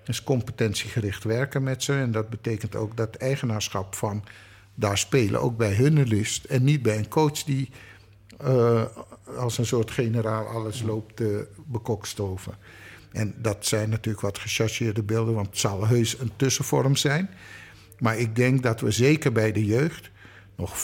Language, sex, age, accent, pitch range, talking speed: Dutch, male, 50-69, Dutch, 105-135 Hz, 165 wpm